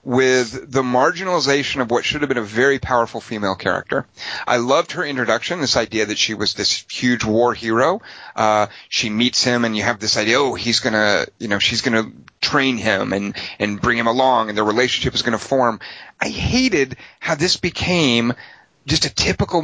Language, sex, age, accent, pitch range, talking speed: English, male, 30-49, American, 115-155 Hz, 195 wpm